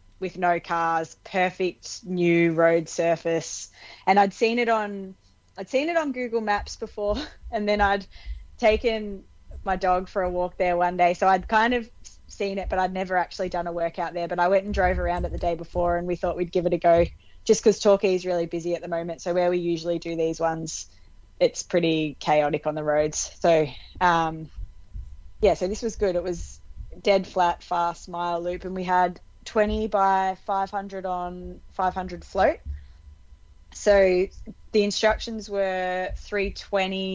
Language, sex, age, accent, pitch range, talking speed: English, female, 20-39, Australian, 170-195 Hz, 185 wpm